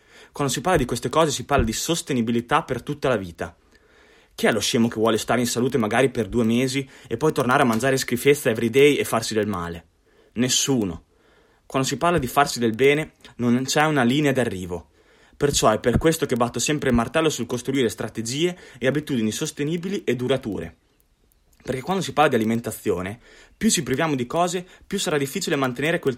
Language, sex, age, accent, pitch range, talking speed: Italian, male, 20-39, native, 115-150 Hz, 195 wpm